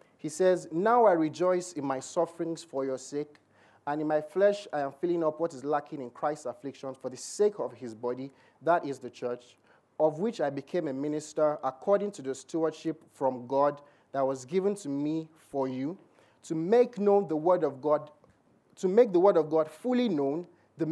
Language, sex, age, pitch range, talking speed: English, male, 30-49, 135-175 Hz, 200 wpm